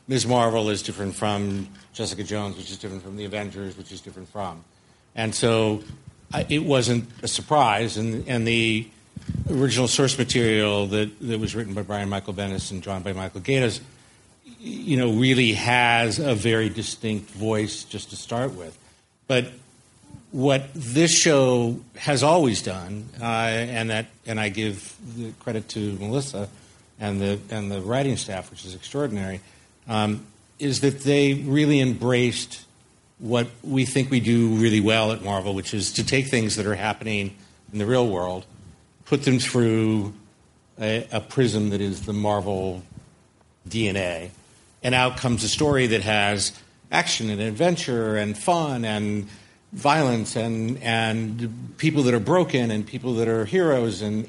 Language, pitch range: English, 105-125 Hz